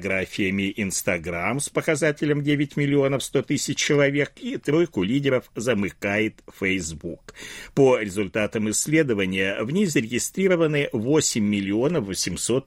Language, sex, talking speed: Russian, male, 105 wpm